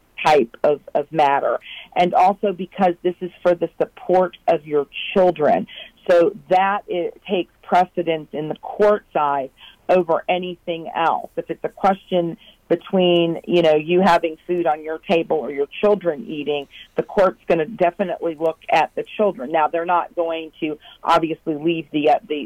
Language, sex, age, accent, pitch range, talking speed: English, female, 40-59, American, 155-180 Hz, 170 wpm